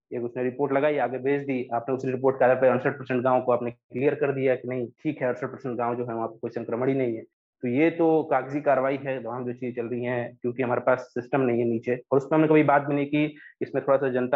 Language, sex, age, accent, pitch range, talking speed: English, male, 30-49, Indian, 120-145 Hz, 220 wpm